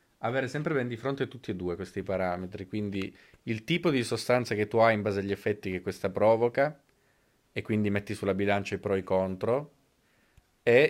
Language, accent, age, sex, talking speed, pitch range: Italian, native, 30-49, male, 205 wpm, 95-110 Hz